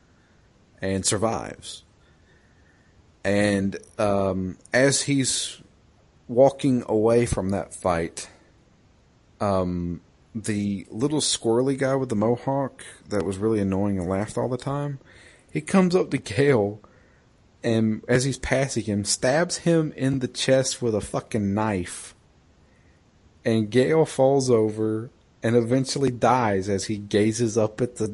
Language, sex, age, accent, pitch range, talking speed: English, male, 40-59, American, 100-140 Hz, 130 wpm